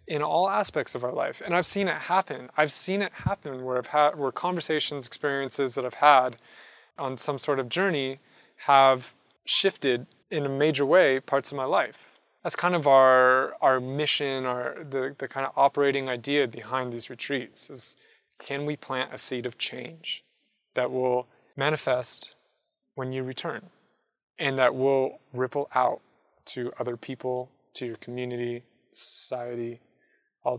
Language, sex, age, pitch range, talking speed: English, male, 20-39, 130-150 Hz, 160 wpm